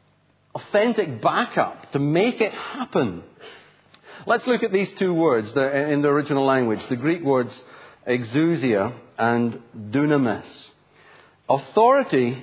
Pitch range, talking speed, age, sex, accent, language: 125-165 Hz, 110 wpm, 40-59, male, British, English